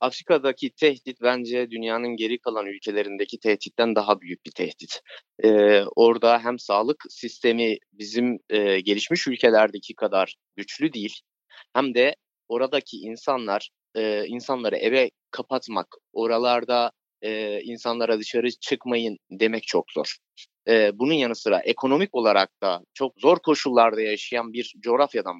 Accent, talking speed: native, 125 wpm